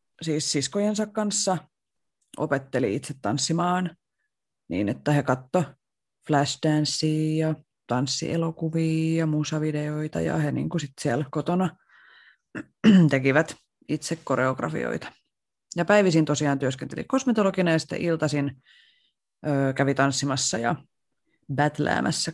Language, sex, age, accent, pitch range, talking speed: Finnish, female, 30-49, native, 140-165 Hz, 90 wpm